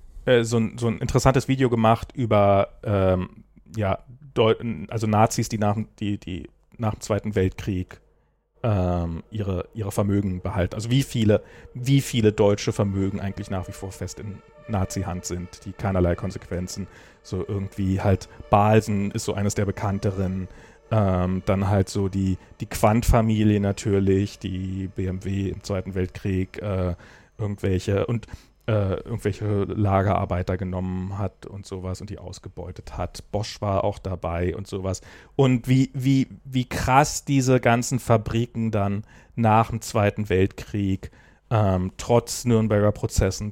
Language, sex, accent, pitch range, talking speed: German, male, German, 95-115 Hz, 140 wpm